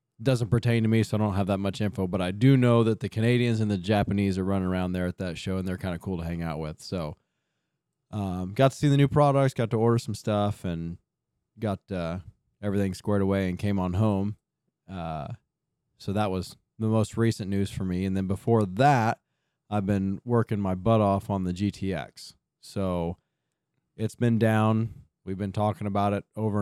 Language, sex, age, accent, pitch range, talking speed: English, male, 20-39, American, 95-115 Hz, 210 wpm